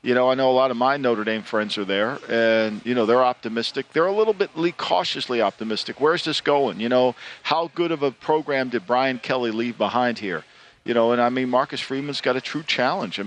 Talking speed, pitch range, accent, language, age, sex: 240 wpm, 125-150 Hz, American, English, 50-69, male